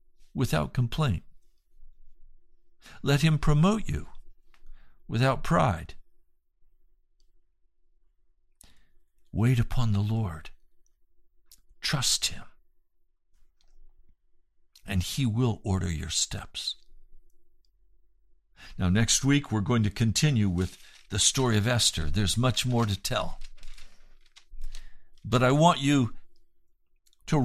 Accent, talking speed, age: American, 90 wpm, 60-79